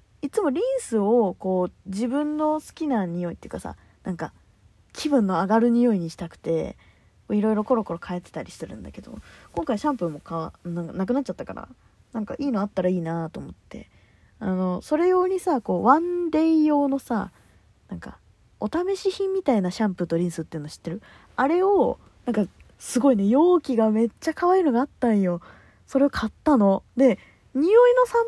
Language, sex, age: Japanese, female, 20-39